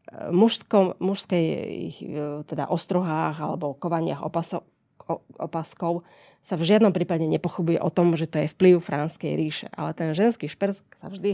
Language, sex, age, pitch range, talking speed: Slovak, female, 20-39, 165-190 Hz, 145 wpm